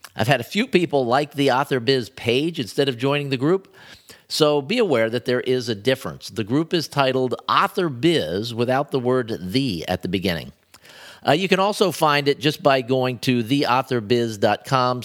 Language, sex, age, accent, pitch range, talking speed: English, male, 50-69, American, 110-140 Hz, 185 wpm